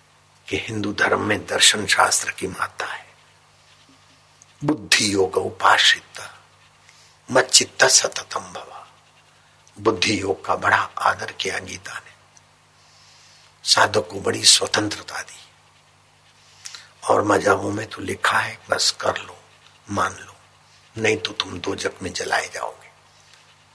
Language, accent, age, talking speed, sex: Hindi, native, 60-79, 120 wpm, male